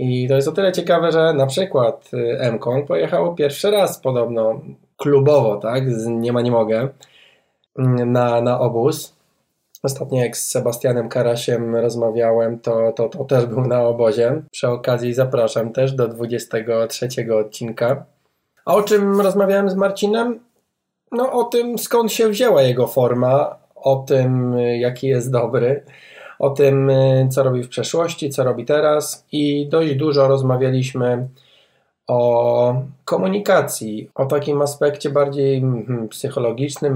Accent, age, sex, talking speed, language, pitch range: native, 20-39, male, 135 wpm, Polish, 120-145 Hz